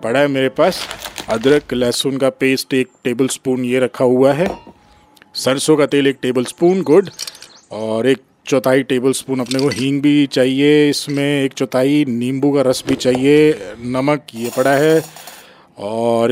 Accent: native